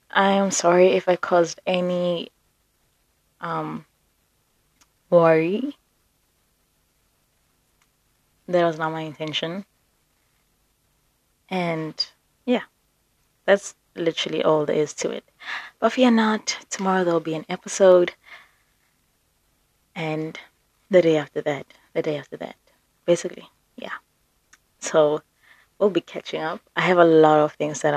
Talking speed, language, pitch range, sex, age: 120 wpm, English, 150-185 Hz, female, 20-39